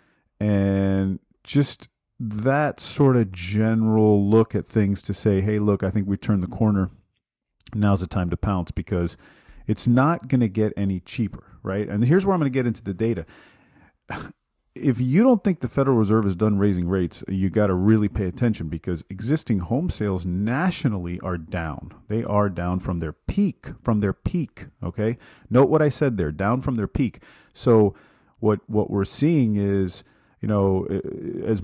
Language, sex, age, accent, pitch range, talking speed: English, male, 40-59, American, 90-120 Hz, 180 wpm